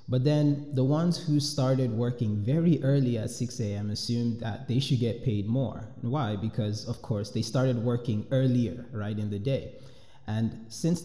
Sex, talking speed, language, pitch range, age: male, 180 wpm, English, 105-130 Hz, 20-39